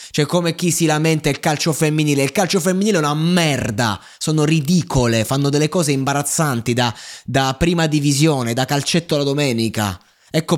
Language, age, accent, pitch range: Italian, 20-39, native, 120-165 Hz